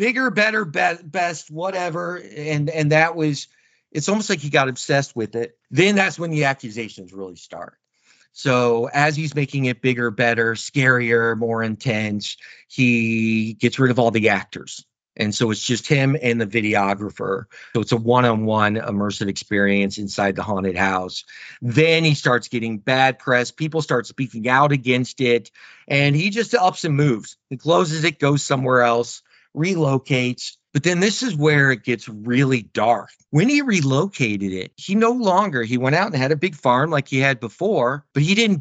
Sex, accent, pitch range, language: male, American, 120-160 Hz, English